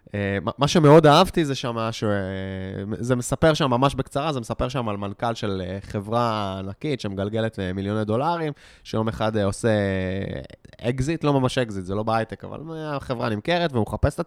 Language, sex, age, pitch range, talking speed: Hebrew, male, 20-39, 110-165 Hz, 150 wpm